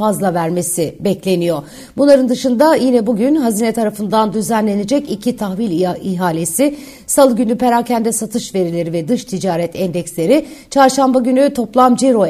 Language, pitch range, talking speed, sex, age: Turkish, 185-250 Hz, 125 wpm, female, 60-79